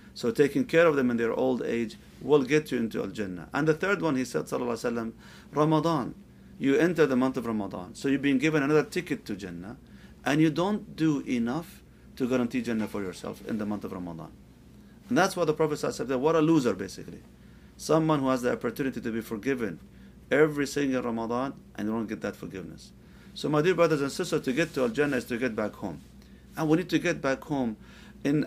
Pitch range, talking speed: 115-145 Hz, 215 wpm